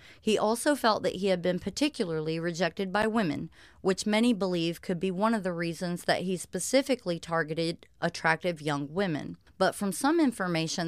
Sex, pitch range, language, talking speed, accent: female, 165-215 Hz, English, 170 wpm, American